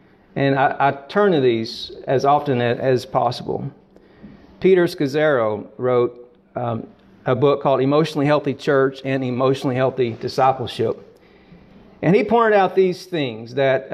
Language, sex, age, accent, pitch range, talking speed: Bengali, male, 40-59, American, 130-170 Hz, 140 wpm